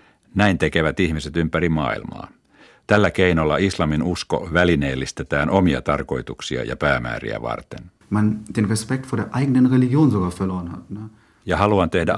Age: 50-69